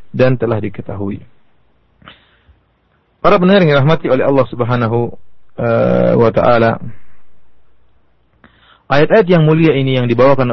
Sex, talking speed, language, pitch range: male, 105 wpm, Indonesian, 120-150 Hz